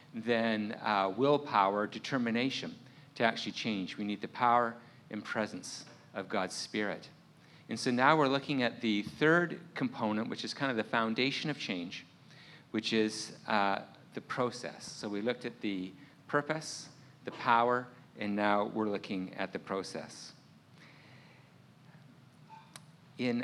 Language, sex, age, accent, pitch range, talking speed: English, male, 50-69, American, 115-145 Hz, 140 wpm